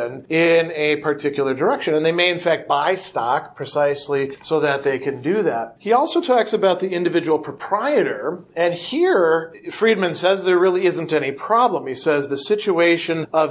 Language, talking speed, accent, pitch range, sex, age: English, 175 wpm, American, 145-185 Hz, male, 40-59